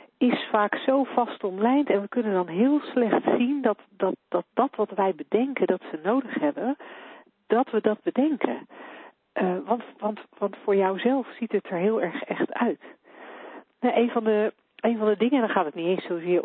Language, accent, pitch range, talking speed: Dutch, Dutch, 175-235 Hz, 200 wpm